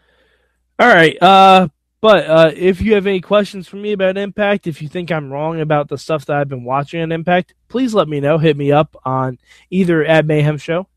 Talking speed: 220 wpm